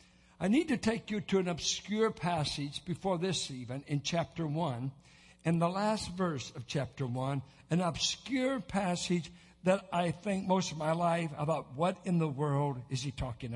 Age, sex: 60-79, male